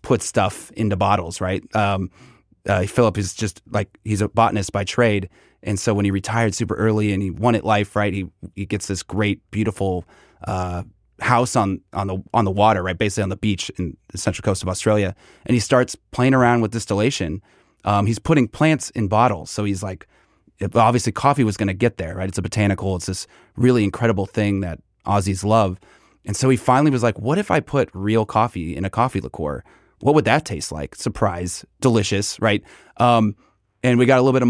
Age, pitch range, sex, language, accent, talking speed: 30-49, 100-125 Hz, male, English, American, 210 wpm